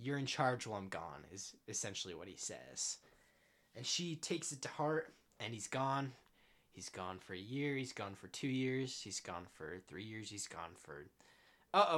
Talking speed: 195 wpm